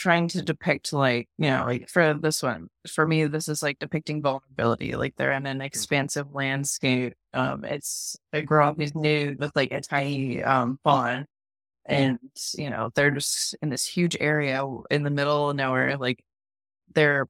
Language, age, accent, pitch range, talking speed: English, 20-39, American, 125-150 Hz, 180 wpm